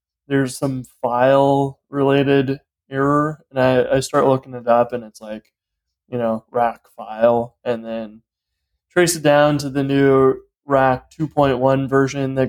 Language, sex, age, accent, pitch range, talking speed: English, male, 20-39, American, 125-140 Hz, 150 wpm